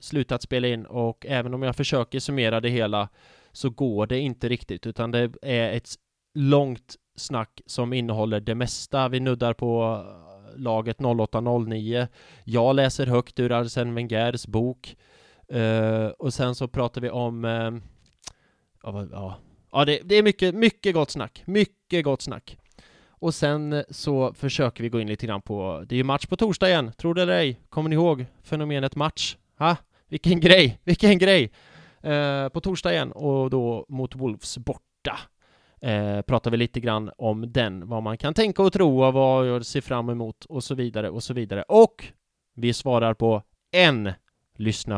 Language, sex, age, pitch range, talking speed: English, male, 20-39, 115-150 Hz, 170 wpm